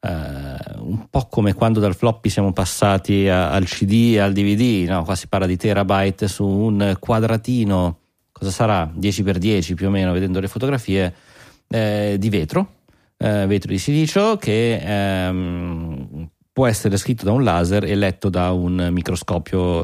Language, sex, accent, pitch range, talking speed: Italian, male, native, 90-110 Hz, 155 wpm